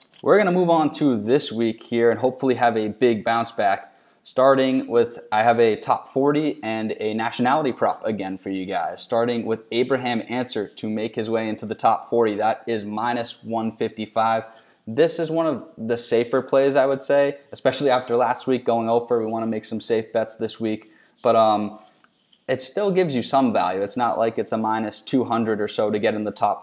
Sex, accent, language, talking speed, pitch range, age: male, American, English, 210 wpm, 110-120 Hz, 10-29